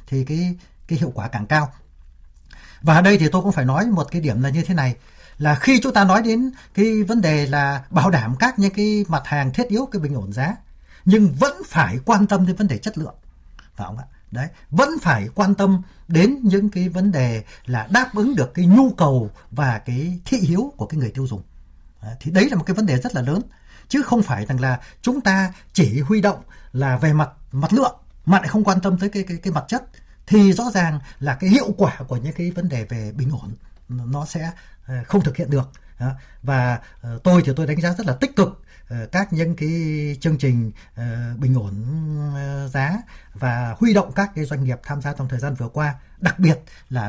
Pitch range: 130-195 Hz